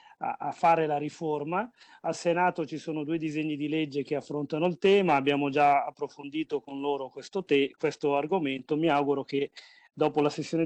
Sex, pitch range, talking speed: male, 140-165 Hz, 170 wpm